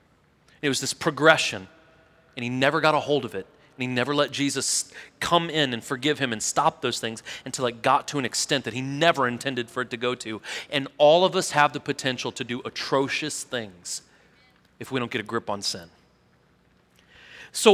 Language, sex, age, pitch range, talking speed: English, male, 30-49, 140-210 Hz, 205 wpm